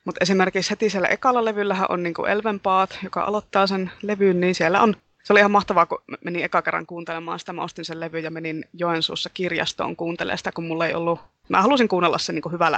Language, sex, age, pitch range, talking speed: Finnish, female, 20-39, 170-195 Hz, 215 wpm